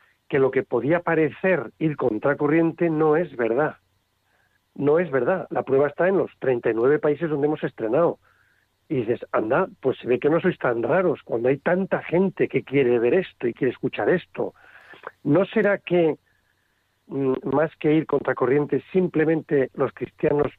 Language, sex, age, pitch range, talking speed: Spanish, male, 40-59, 130-175 Hz, 165 wpm